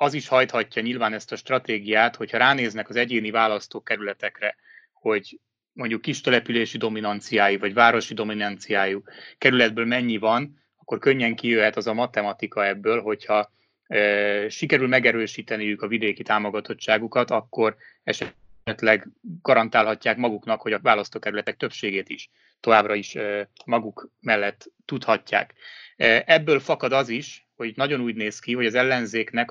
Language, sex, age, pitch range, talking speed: Hungarian, male, 30-49, 105-125 Hz, 130 wpm